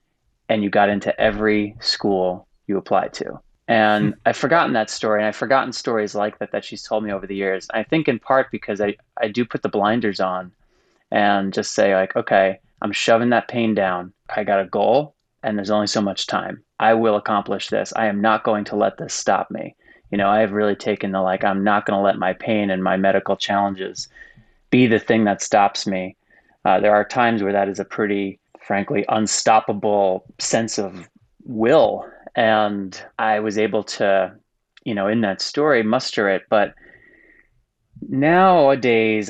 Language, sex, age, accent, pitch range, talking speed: English, male, 20-39, American, 100-115 Hz, 190 wpm